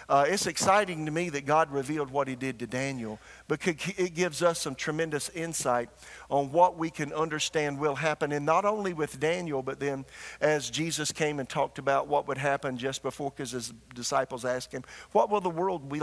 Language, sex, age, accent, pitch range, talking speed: English, male, 50-69, American, 130-160 Hz, 205 wpm